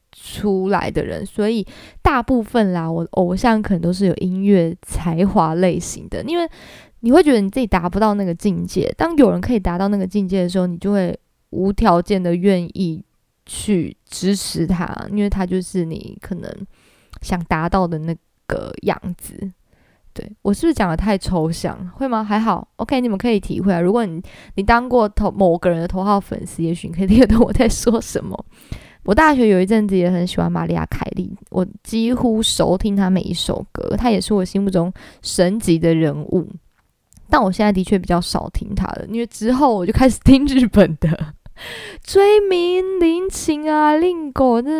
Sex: female